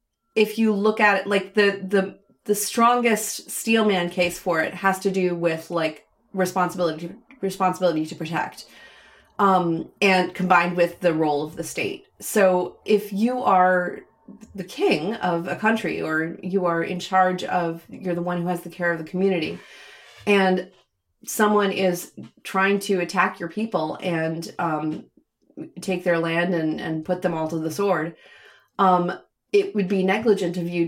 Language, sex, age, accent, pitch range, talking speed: English, female, 30-49, American, 170-210 Hz, 170 wpm